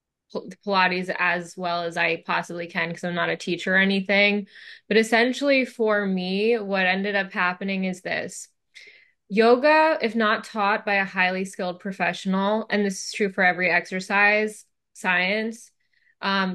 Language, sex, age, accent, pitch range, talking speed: English, female, 10-29, American, 180-210 Hz, 150 wpm